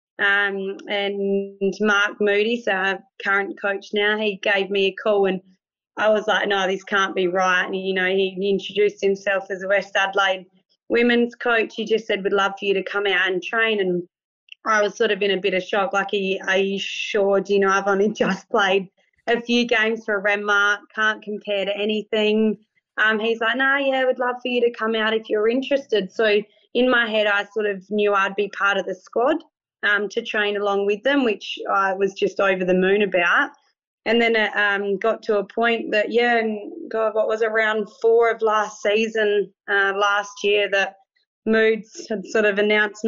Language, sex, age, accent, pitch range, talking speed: English, female, 20-39, Australian, 195-220 Hz, 210 wpm